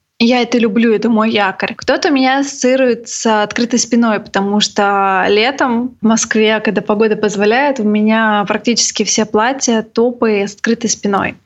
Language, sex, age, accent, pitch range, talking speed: Russian, female, 20-39, native, 220-260 Hz, 150 wpm